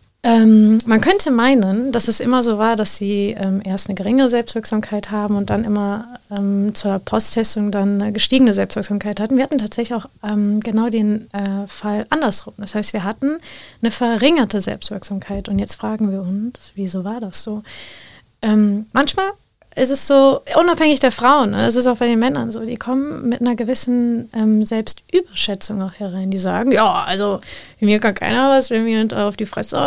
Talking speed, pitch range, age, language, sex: 185 wpm, 205-240 Hz, 30-49, German, female